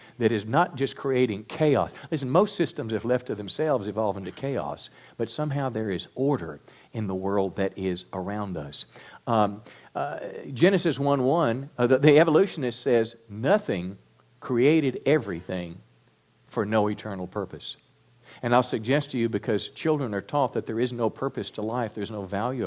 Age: 50-69